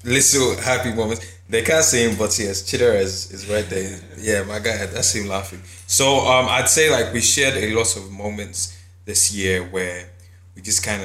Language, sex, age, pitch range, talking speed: English, male, 20-39, 90-105 Hz, 200 wpm